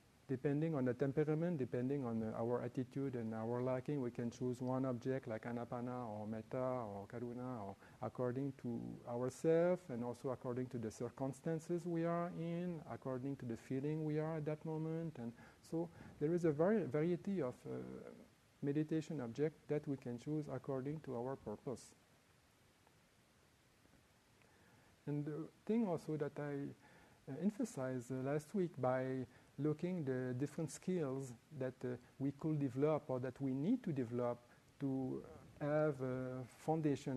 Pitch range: 125-155 Hz